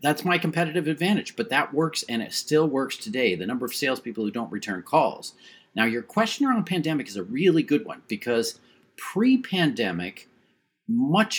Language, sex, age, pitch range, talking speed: English, male, 40-59, 120-195 Hz, 180 wpm